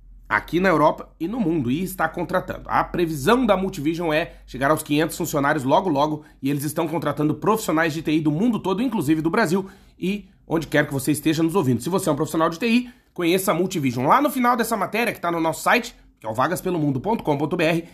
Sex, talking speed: male, 215 wpm